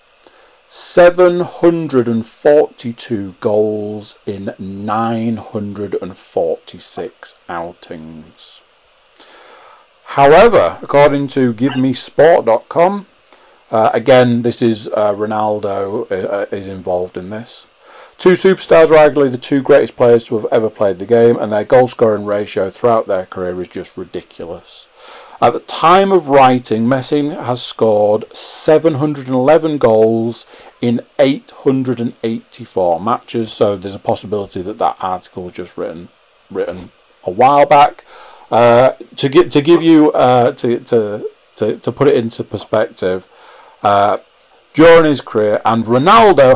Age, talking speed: 40-59, 120 wpm